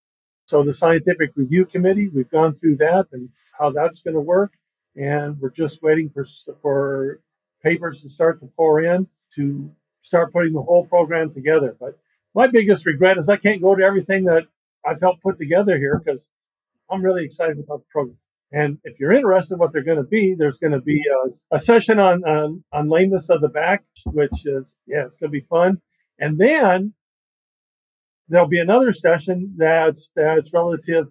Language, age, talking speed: English, 50-69, 185 wpm